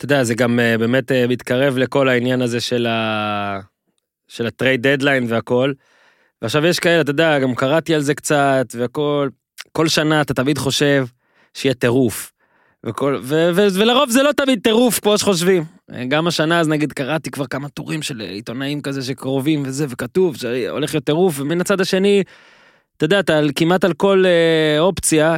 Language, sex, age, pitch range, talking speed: Hebrew, male, 20-39, 125-155 Hz, 175 wpm